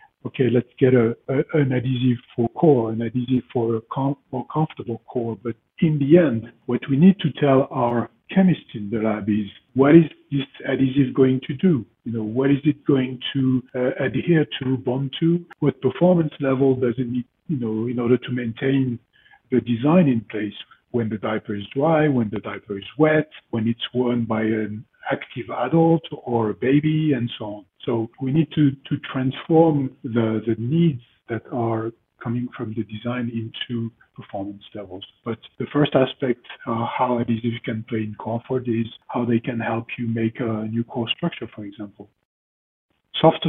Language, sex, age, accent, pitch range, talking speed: English, male, 50-69, French, 115-140 Hz, 180 wpm